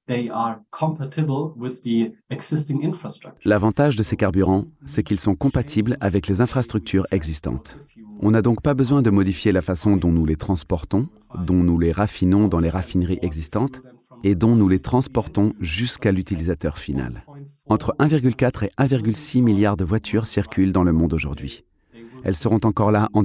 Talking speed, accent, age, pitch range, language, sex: 150 wpm, French, 40-59, 95-125 Hz, French, male